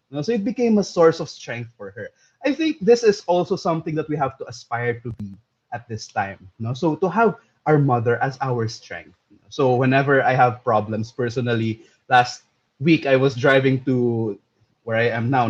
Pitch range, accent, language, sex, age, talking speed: 120-160 Hz, Filipino, English, male, 20-39, 195 wpm